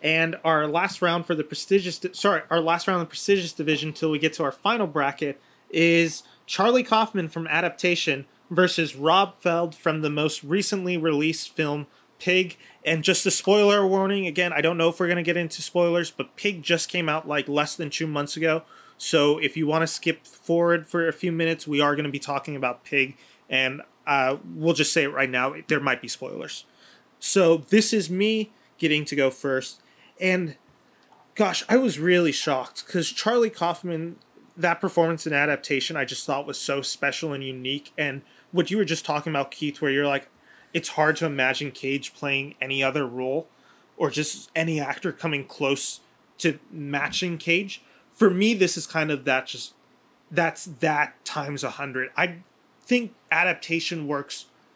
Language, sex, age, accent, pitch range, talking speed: English, male, 30-49, American, 140-175 Hz, 185 wpm